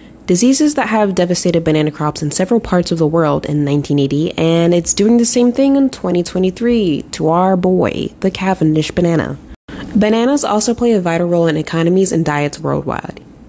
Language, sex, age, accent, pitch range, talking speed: English, female, 20-39, American, 160-225 Hz, 175 wpm